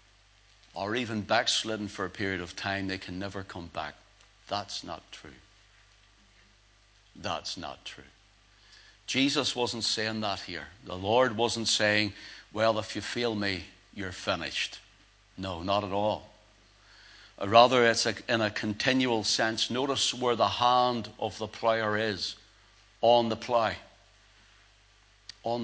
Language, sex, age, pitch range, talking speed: English, male, 60-79, 100-115 Hz, 135 wpm